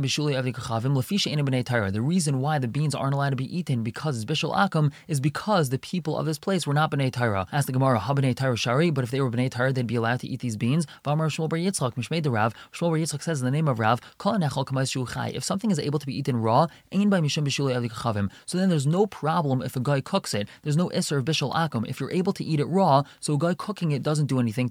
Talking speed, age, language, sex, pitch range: 240 wpm, 20-39, English, male, 125-160 Hz